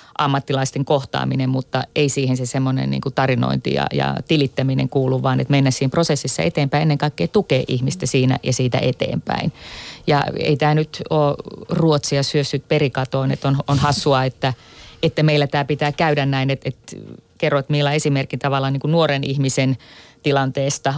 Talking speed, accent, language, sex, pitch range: 165 wpm, native, Finnish, female, 135-150 Hz